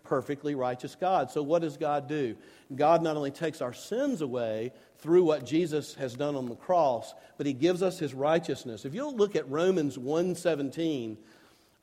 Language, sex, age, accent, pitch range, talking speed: English, male, 50-69, American, 150-200 Hz, 180 wpm